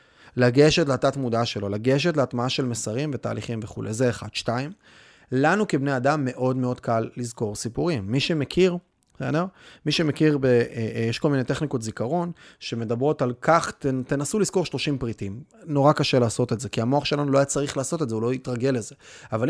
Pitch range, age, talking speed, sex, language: 120-155 Hz, 30-49, 180 wpm, male, Hebrew